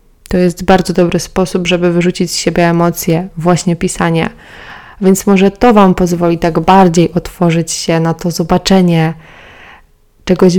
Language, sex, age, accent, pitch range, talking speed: Polish, female, 20-39, native, 165-185 Hz, 140 wpm